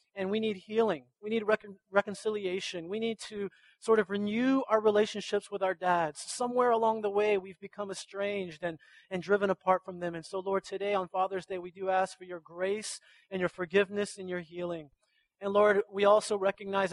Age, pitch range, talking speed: 30-49, 175-205 Hz, 195 wpm